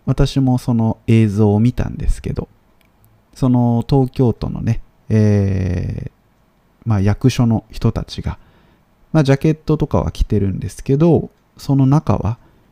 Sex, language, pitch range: male, Japanese, 100-135 Hz